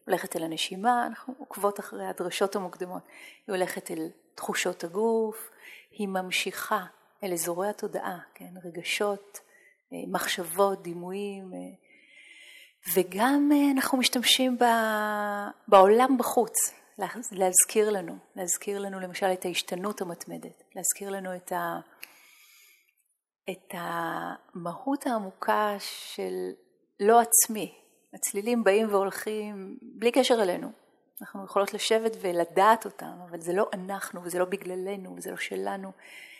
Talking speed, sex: 105 wpm, female